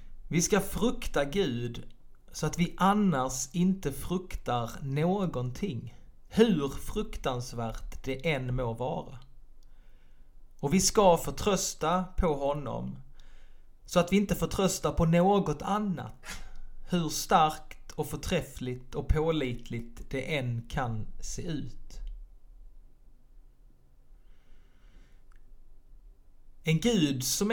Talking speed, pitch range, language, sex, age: 100 wpm, 120-175 Hz, Swedish, male, 30-49